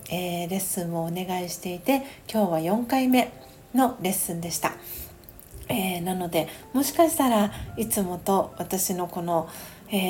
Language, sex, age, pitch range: Japanese, female, 40-59, 175-205 Hz